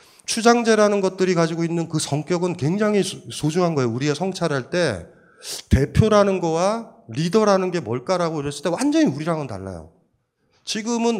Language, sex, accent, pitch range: Korean, male, native, 130-195 Hz